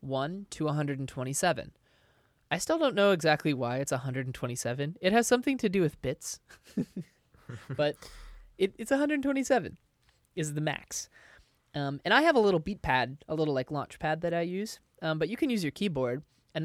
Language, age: English, 20-39